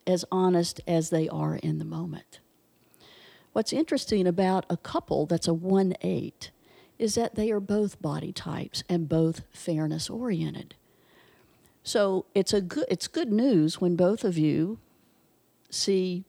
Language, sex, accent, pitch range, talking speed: English, female, American, 165-205 Hz, 135 wpm